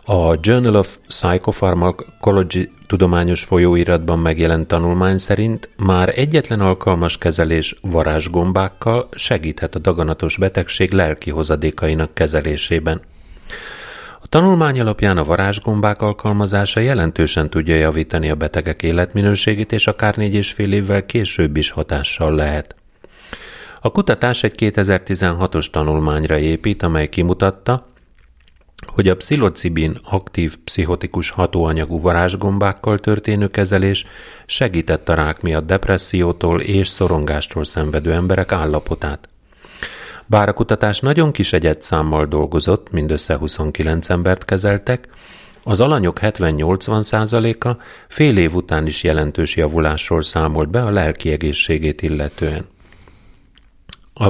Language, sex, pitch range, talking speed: Hungarian, male, 80-100 Hz, 105 wpm